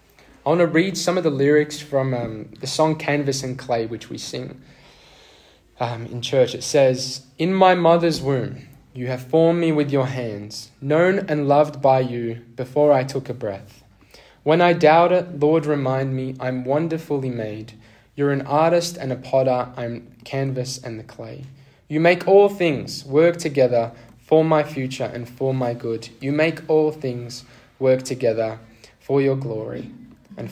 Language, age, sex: English, 10-29, male